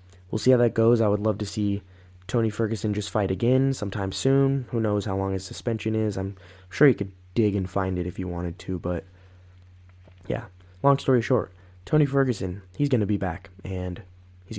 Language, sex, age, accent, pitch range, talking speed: English, male, 20-39, American, 90-120 Hz, 205 wpm